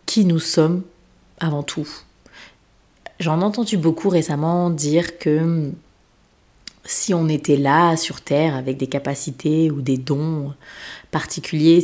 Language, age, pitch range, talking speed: French, 30-49, 145-170 Hz, 125 wpm